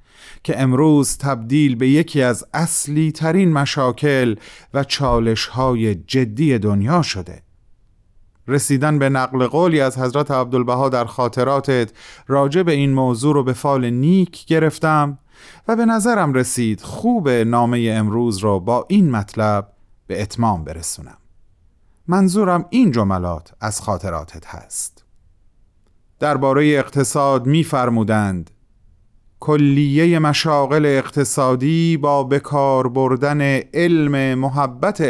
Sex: male